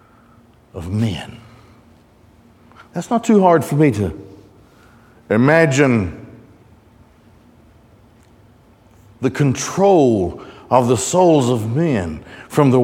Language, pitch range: English, 110-170 Hz